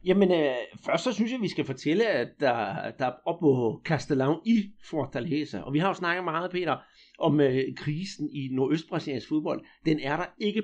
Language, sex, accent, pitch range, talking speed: Danish, male, native, 140-185 Hz, 195 wpm